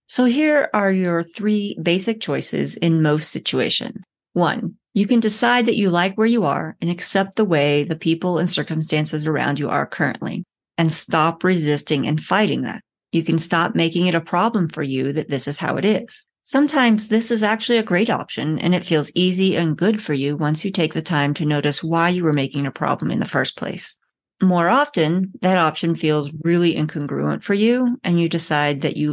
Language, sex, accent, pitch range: English, female, American, 155-195 Hz